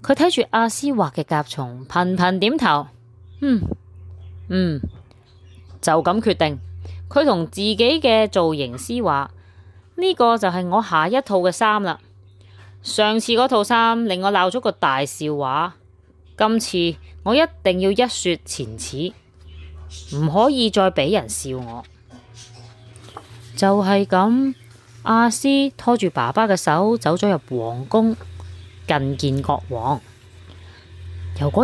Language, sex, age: Chinese, female, 20-39